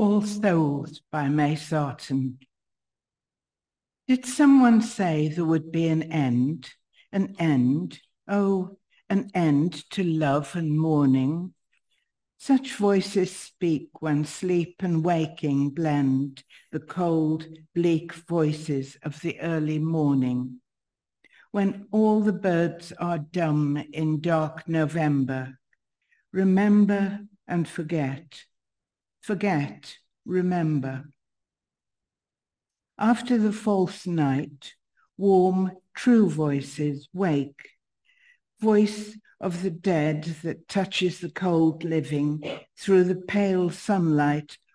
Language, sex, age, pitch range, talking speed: English, female, 60-79, 150-195 Hz, 100 wpm